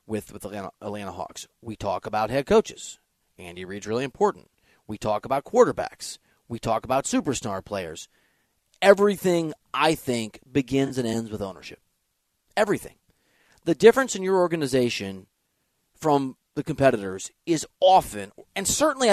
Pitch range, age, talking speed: 120-190 Hz, 30-49, 140 wpm